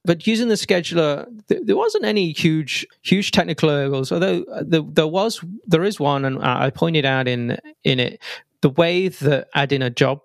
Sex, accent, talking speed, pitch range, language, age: male, British, 180 wpm, 125-145 Hz, English, 30-49